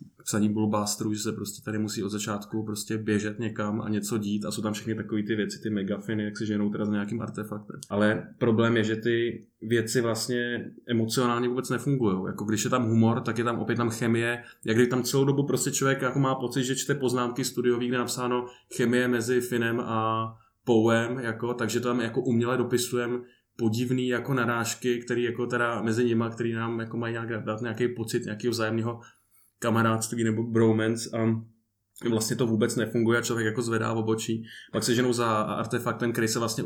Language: Czech